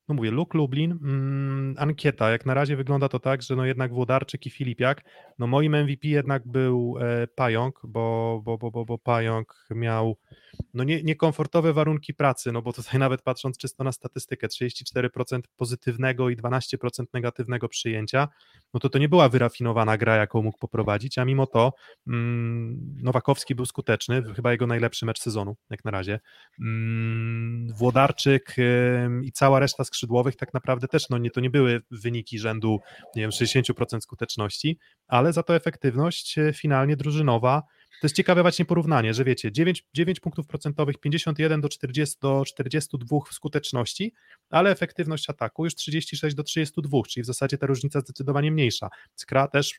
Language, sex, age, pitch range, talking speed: Polish, male, 20-39, 120-145 Hz, 165 wpm